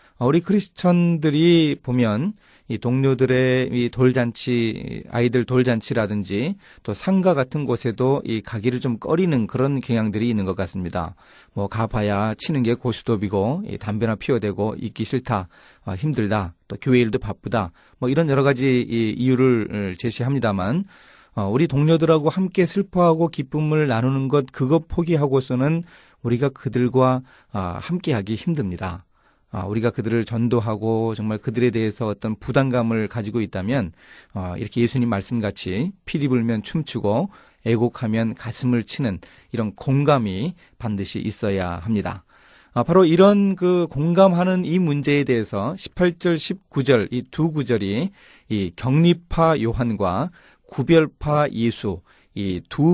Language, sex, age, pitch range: Korean, male, 30-49, 110-150 Hz